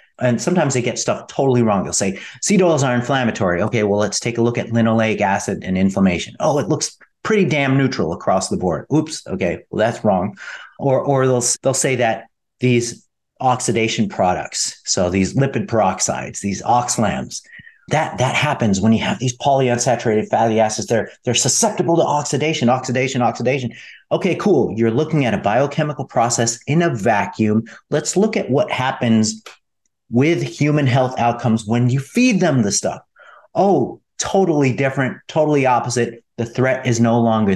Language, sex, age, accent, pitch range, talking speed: English, male, 40-59, American, 110-140 Hz, 170 wpm